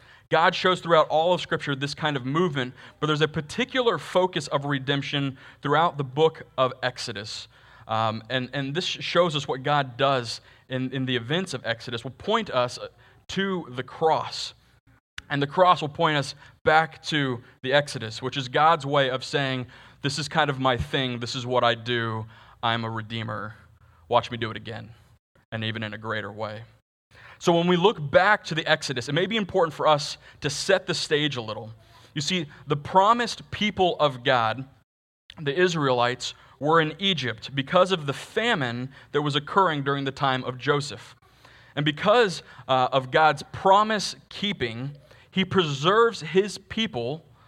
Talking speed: 175 wpm